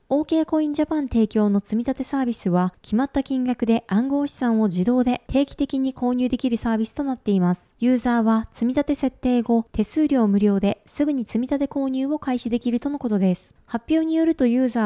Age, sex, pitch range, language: 20-39, female, 210-275 Hz, Japanese